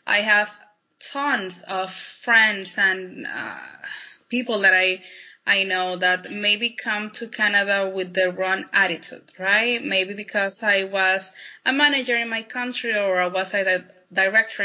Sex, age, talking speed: female, 20-39, 150 wpm